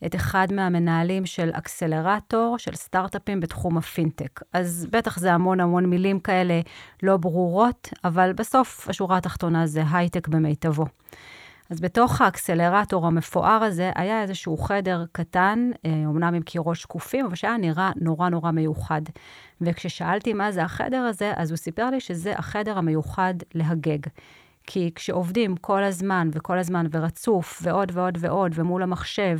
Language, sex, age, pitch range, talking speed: English, female, 30-49, 165-200 Hz, 140 wpm